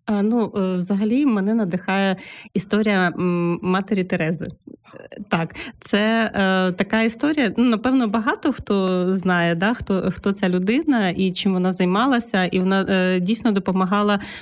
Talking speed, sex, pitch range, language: 130 wpm, female, 190-230 Hz, Ukrainian